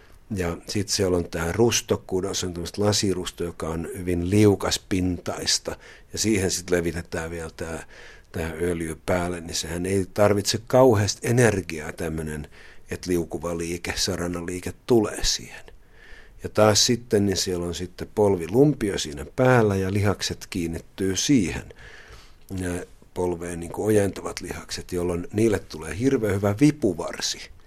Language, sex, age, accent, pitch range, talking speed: Finnish, male, 50-69, native, 85-105 Hz, 130 wpm